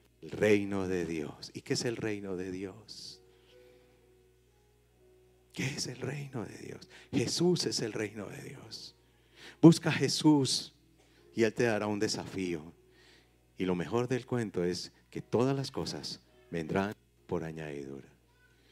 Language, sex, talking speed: Spanish, male, 145 wpm